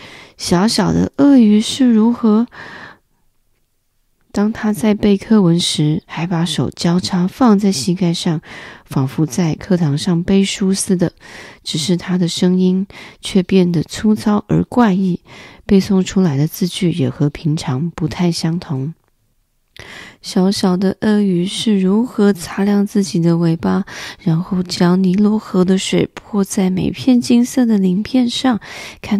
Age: 20-39